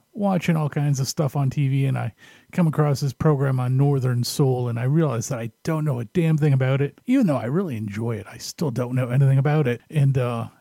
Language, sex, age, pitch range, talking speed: English, male, 40-59, 125-160 Hz, 245 wpm